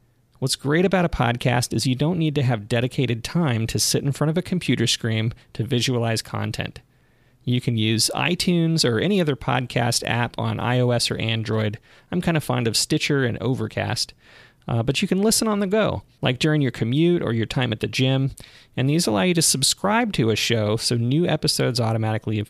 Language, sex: English, male